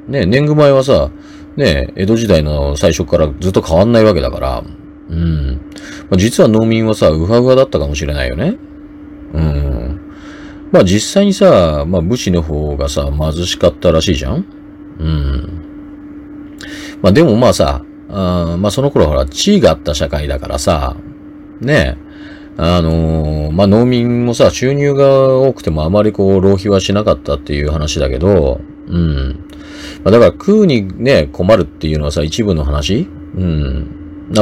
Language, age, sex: Japanese, 30-49, male